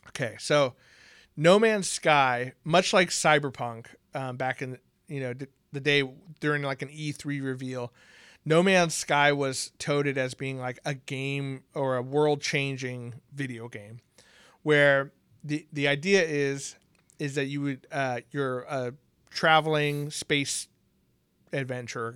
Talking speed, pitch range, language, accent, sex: 140 wpm, 130-155 Hz, English, American, male